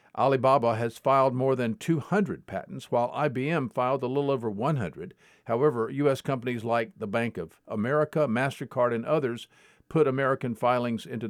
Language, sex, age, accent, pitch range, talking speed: English, male, 50-69, American, 115-150 Hz, 155 wpm